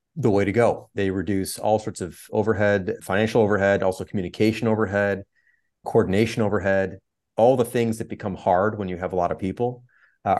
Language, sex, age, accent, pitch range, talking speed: English, male, 30-49, American, 95-120 Hz, 180 wpm